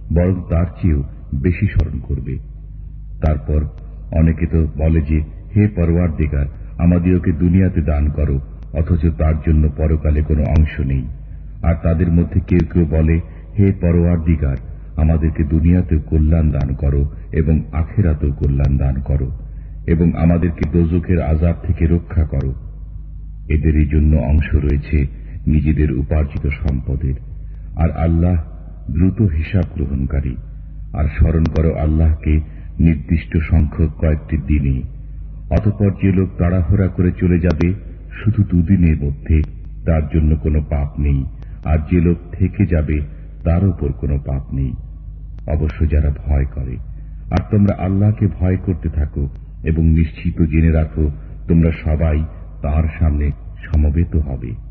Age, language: 50-69, English